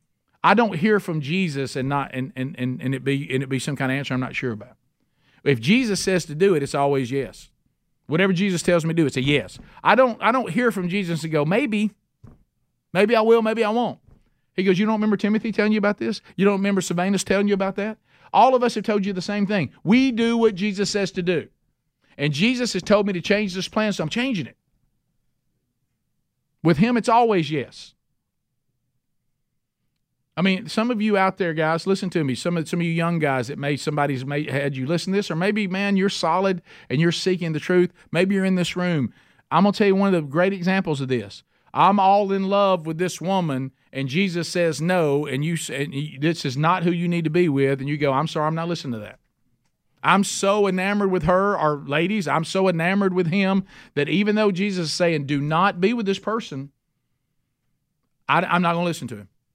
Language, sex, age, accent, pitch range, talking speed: English, male, 50-69, American, 145-200 Hz, 230 wpm